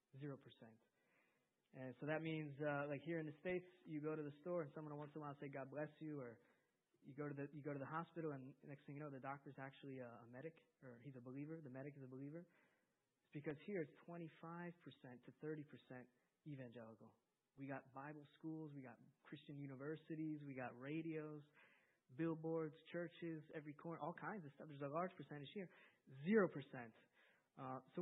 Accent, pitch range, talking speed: American, 135-160 Hz, 210 wpm